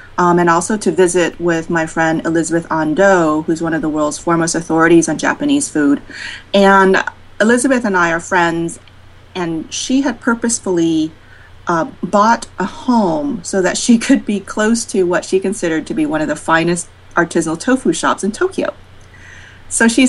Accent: American